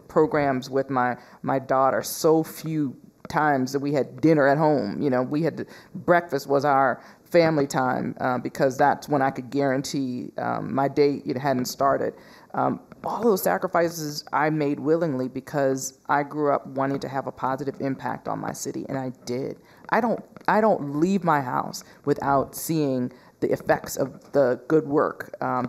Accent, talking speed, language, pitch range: American, 180 wpm, English, 135-170 Hz